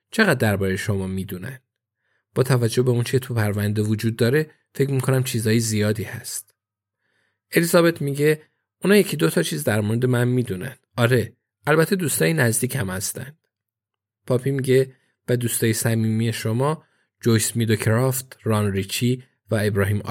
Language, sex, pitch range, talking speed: Persian, male, 105-130 Hz, 140 wpm